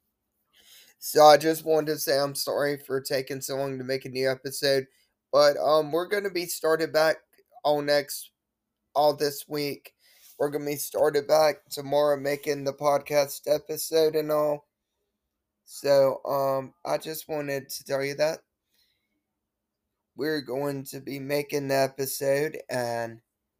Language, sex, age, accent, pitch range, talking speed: English, male, 20-39, American, 120-145 Hz, 155 wpm